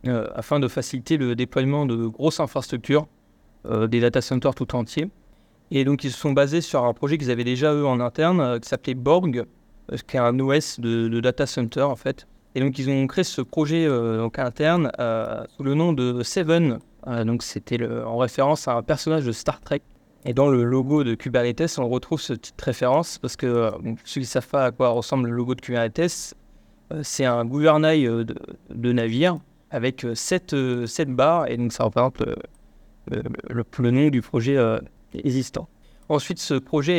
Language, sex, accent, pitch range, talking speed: French, male, French, 120-150 Hz, 210 wpm